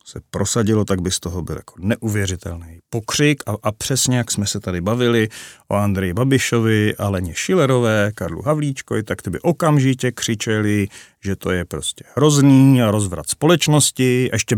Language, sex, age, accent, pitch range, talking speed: Czech, male, 40-59, native, 100-135 Hz, 155 wpm